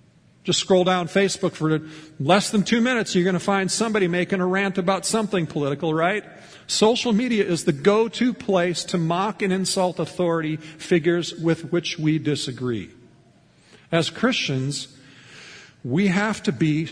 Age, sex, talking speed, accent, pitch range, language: 50-69, male, 155 wpm, American, 150-190 Hz, English